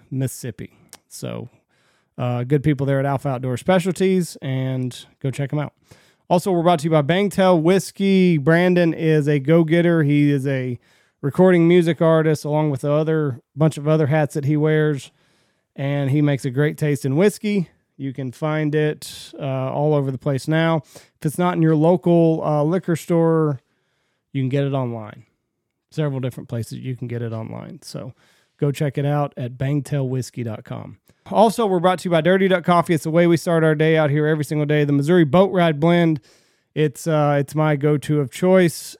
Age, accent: 30-49, American